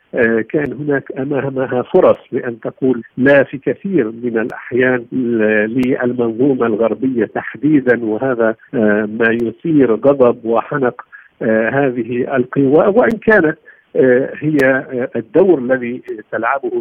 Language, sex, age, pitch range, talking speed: Arabic, male, 50-69, 110-135 Hz, 95 wpm